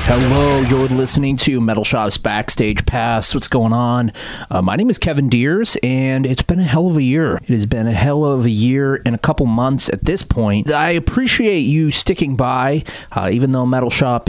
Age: 30-49